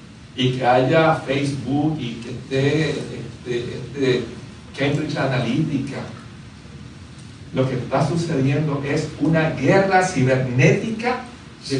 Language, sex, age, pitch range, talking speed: Spanish, male, 60-79, 125-175 Hz, 100 wpm